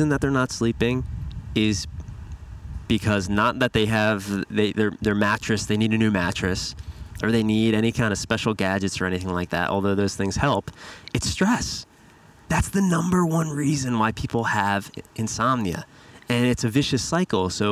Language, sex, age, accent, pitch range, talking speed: English, male, 20-39, American, 95-115 Hz, 175 wpm